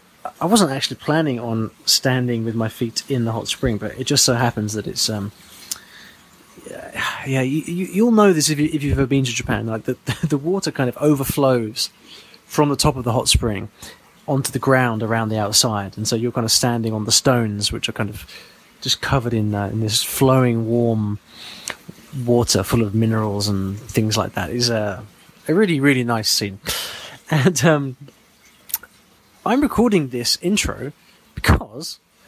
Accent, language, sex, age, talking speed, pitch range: British, English, male, 30-49, 185 wpm, 110-145 Hz